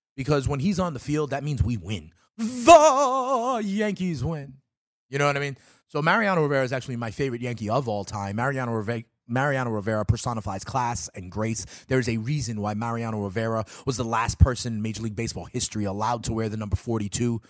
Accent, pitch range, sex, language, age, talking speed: American, 115-140 Hz, male, English, 30-49, 200 wpm